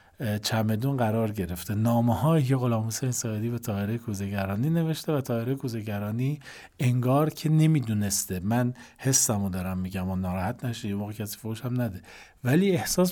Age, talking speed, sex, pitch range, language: 40-59, 140 wpm, male, 110-155 Hz, Persian